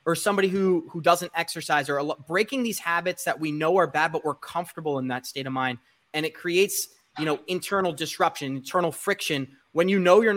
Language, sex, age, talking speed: English, male, 20-39, 220 wpm